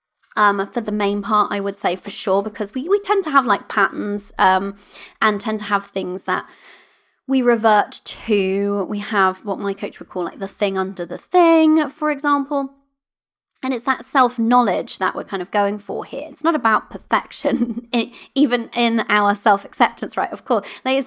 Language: English